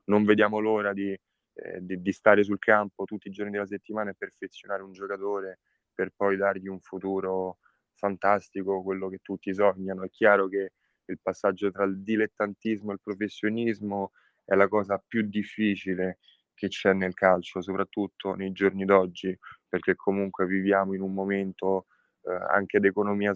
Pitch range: 95-100 Hz